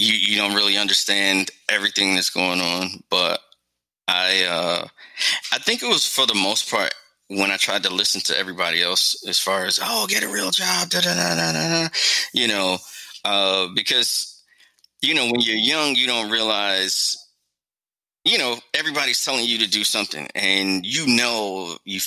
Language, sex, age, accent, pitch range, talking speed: English, male, 20-39, American, 90-105 Hz, 165 wpm